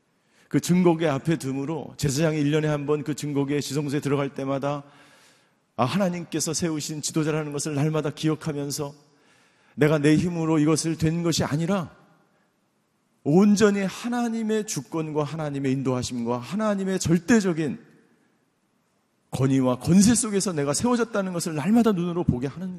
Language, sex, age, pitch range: Korean, male, 40-59, 130-165 Hz